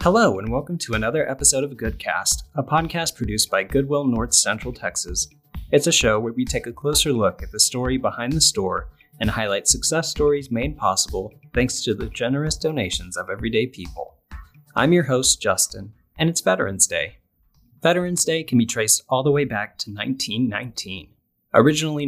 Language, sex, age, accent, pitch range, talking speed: English, male, 30-49, American, 110-145 Hz, 175 wpm